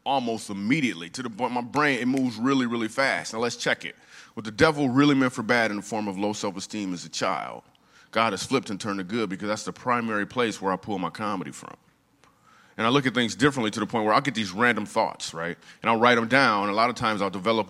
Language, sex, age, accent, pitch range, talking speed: English, male, 30-49, American, 95-125 Hz, 260 wpm